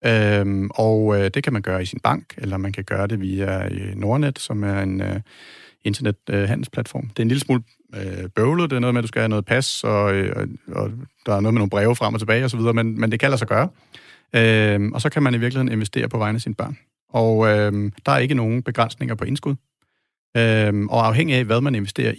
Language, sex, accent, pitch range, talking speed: Danish, male, native, 105-125 Hz, 240 wpm